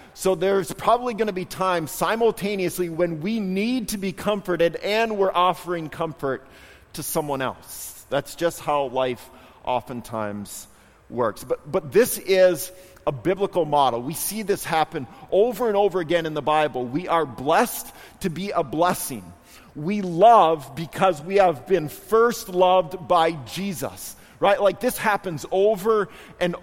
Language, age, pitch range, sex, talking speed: English, 40-59, 125-190 Hz, male, 155 wpm